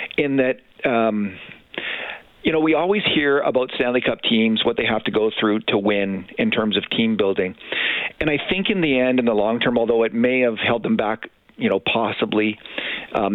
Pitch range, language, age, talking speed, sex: 105-125 Hz, English, 50-69, 205 wpm, male